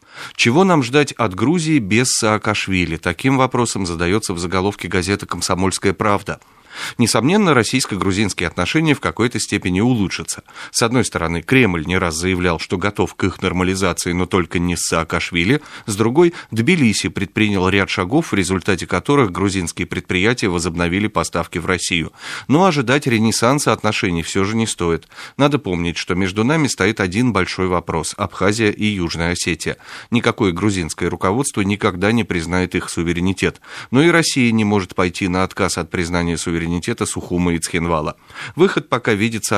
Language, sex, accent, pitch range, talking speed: Russian, male, native, 90-110 Hz, 155 wpm